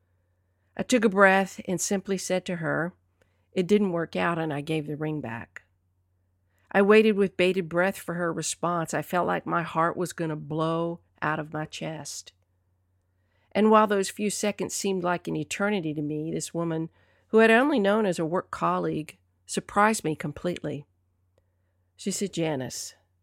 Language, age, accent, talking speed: English, 50-69, American, 175 wpm